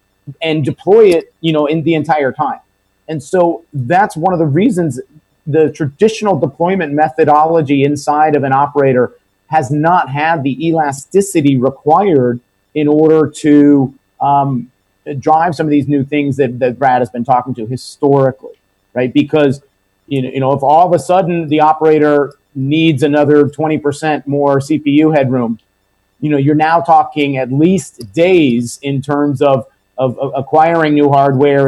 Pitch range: 130-155 Hz